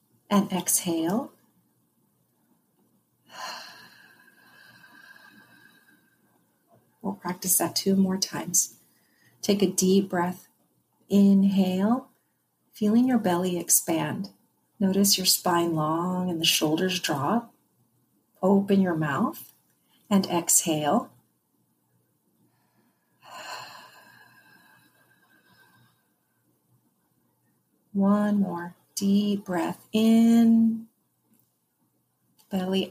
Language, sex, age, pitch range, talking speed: English, female, 40-59, 175-205 Hz, 65 wpm